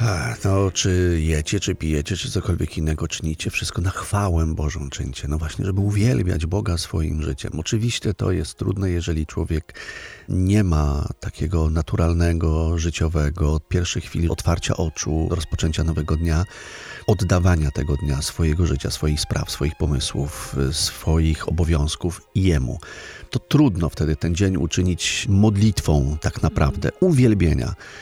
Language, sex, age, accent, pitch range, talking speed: Polish, male, 40-59, native, 80-100 Hz, 135 wpm